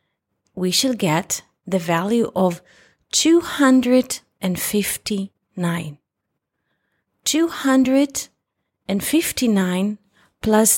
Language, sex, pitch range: English, female, 185-260 Hz